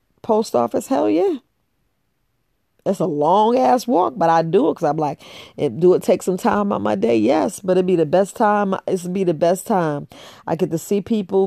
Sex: female